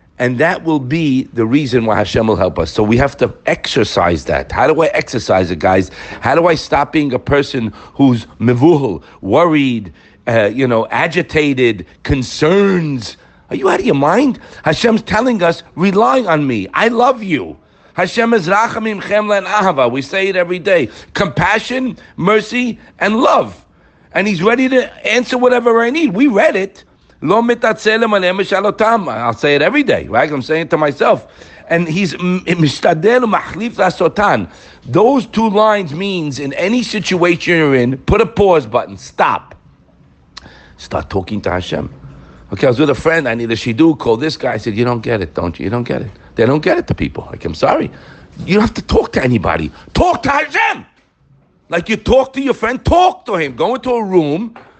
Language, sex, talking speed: English, male, 185 wpm